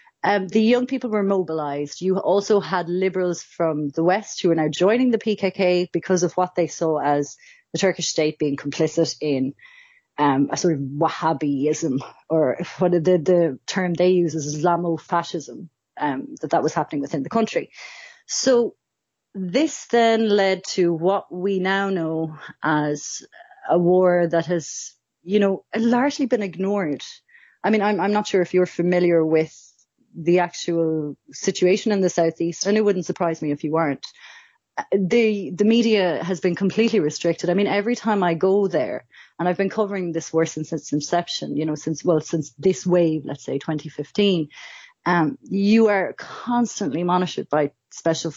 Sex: female